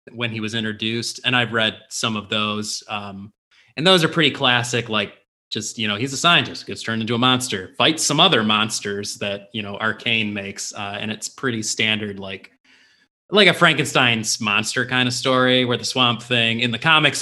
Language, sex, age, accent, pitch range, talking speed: English, male, 30-49, American, 105-145 Hz, 200 wpm